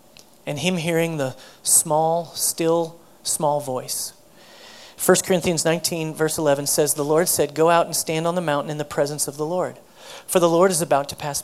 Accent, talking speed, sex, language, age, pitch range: American, 195 wpm, male, English, 40-59, 150-195 Hz